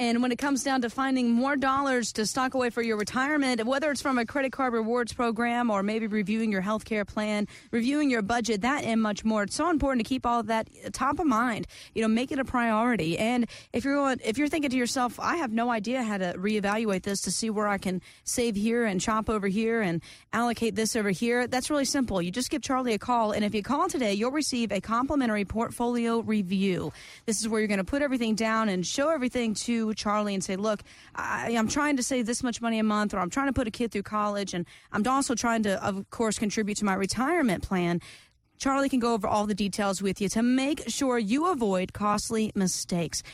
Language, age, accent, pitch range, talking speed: English, 30-49, American, 205-255 Hz, 235 wpm